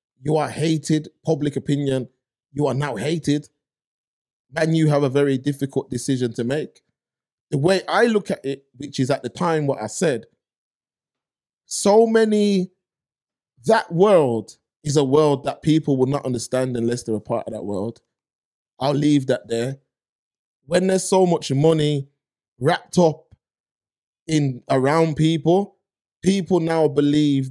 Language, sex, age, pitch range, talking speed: English, male, 20-39, 130-170 Hz, 150 wpm